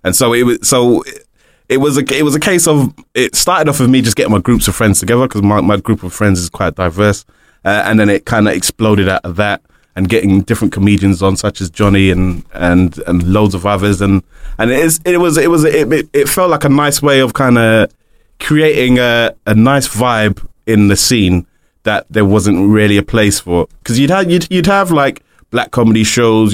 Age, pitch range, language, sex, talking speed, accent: 20-39, 100-120 Hz, English, male, 230 wpm, British